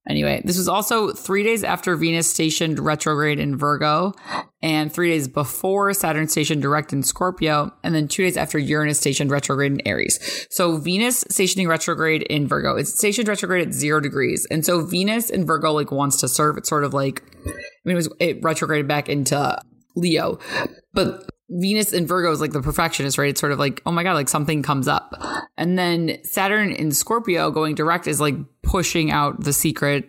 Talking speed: 195 wpm